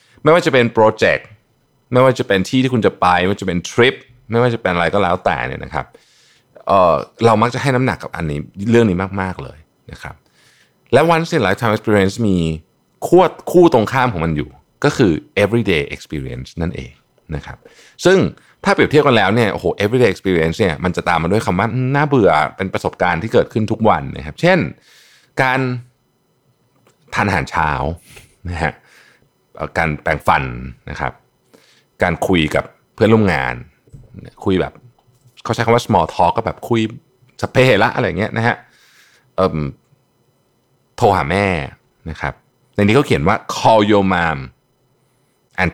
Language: Thai